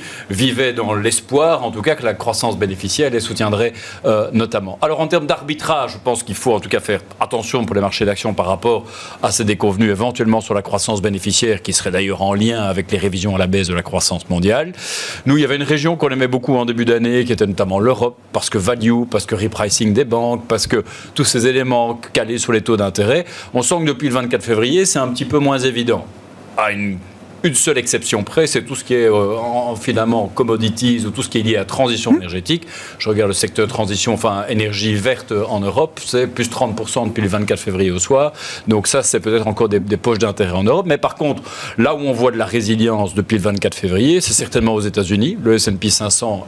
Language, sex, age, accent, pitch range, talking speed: French, male, 40-59, French, 105-125 Hz, 230 wpm